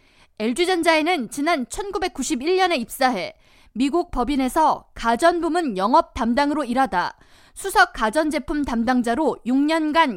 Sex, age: female, 20-39